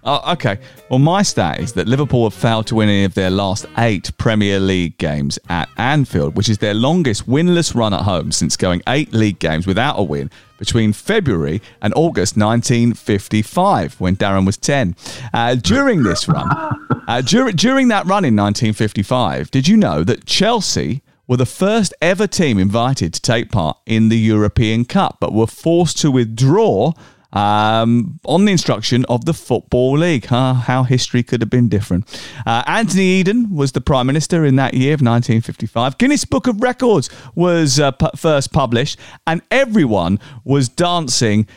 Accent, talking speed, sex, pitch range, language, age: British, 165 wpm, male, 105-155 Hz, English, 40-59